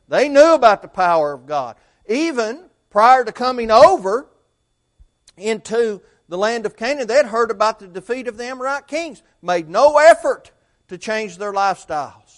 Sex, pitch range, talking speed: male, 165-245 Hz, 165 wpm